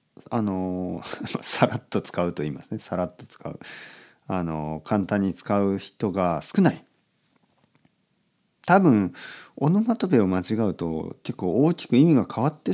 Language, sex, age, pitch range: Japanese, male, 40-59, 85-140 Hz